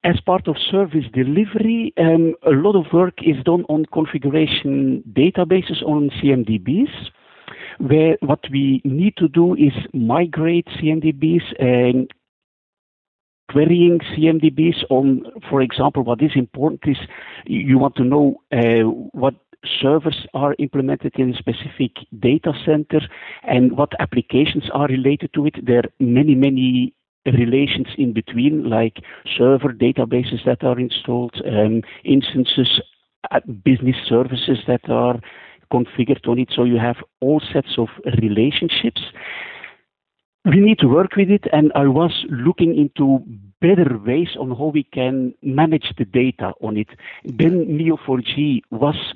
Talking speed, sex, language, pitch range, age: 135 wpm, male, English, 125-155 Hz, 60-79